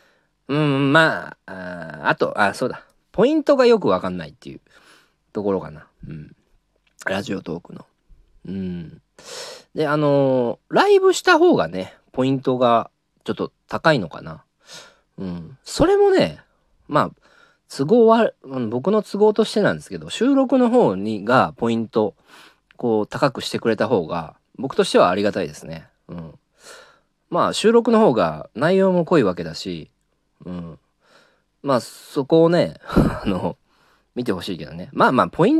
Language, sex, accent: Japanese, male, native